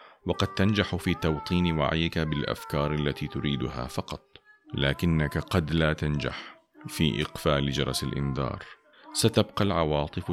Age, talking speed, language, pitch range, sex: 40-59, 110 wpm, Arabic, 70-95 Hz, male